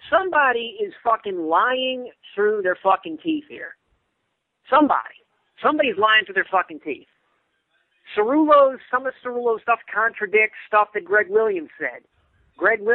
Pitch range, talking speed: 160-235 Hz, 130 wpm